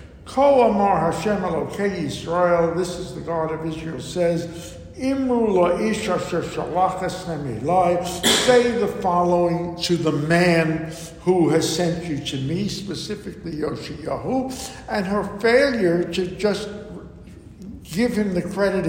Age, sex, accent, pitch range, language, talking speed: 60-79, male, American, 160-200 Hz, English, 95 wpm